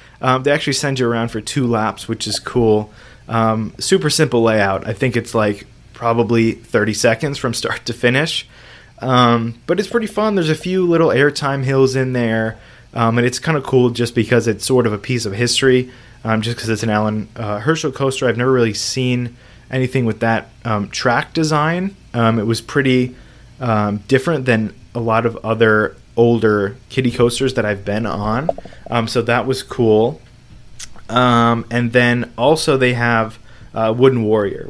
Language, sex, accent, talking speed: English, male, American, 185 wpm